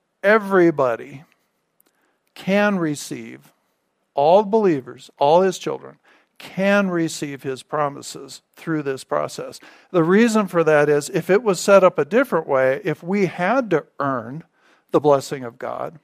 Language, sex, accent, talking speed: English, male, American, 140 wpm